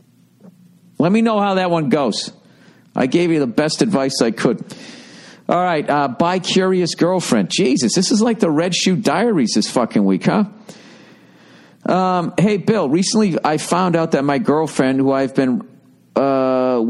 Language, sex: English, male